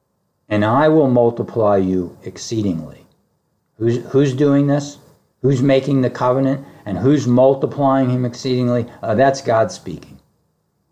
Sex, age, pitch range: male, 50-69, 110-140 Hz